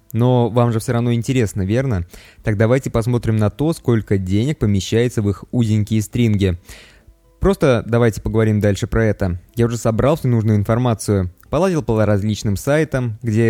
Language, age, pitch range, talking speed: Russian, 20-39, 105-130 Hz, 160 wpm